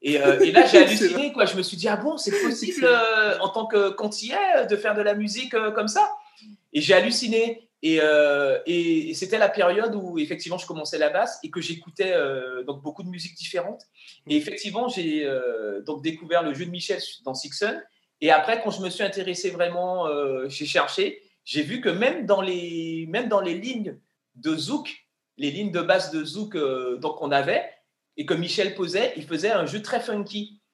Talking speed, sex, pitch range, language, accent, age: 215 wpm, male, 150-215 Hz, French, French, 30-49